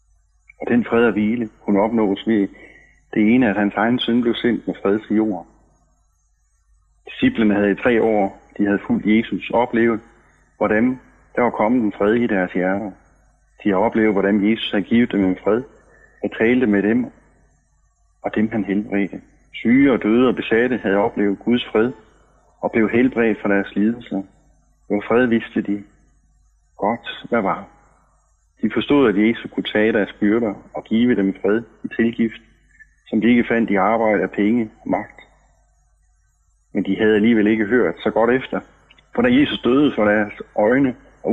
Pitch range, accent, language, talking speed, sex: 100-115 Hz, native, Danish, 175 wpm, male